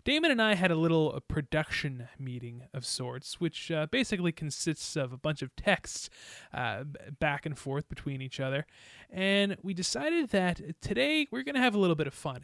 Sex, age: male, 20-39